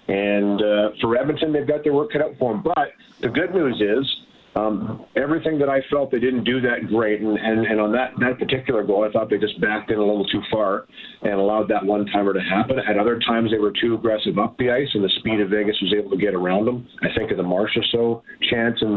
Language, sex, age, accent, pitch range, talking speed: English, male, 40-59, American, 105-130 Hz, 255 wpm